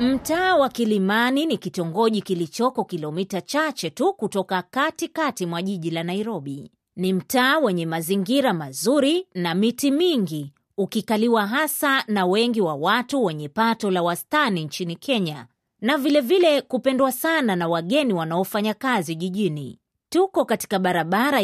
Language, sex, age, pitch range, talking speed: Swahili, female, 30-49, 180-265 Hz, 135 wpm